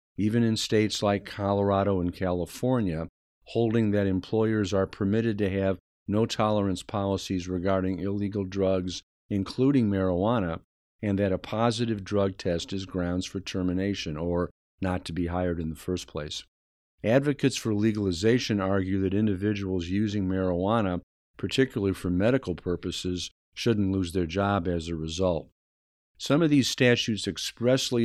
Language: English